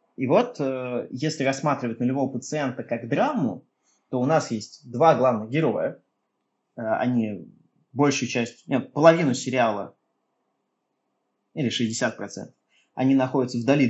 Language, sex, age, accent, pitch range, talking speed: Russian, male, 20-39, native, 115-145 Hz, 110 wpm